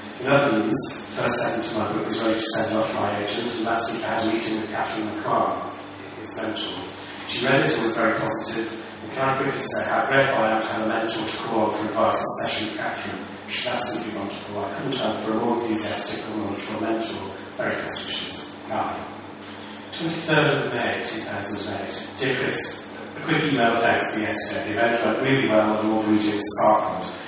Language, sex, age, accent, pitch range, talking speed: English, male, 30-49, British, 105-120 Hz, 200 wpm